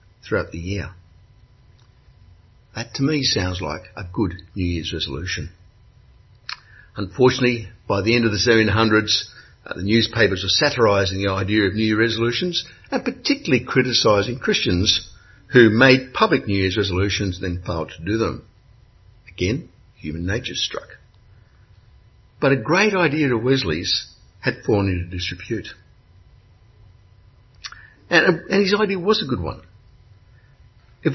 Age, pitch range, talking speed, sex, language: 60-79, 95-135 Hz, 135 wpm, male, English